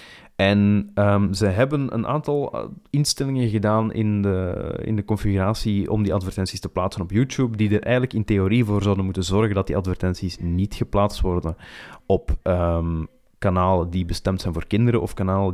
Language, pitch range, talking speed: Dutch, 95-110 Hz, 175 wpm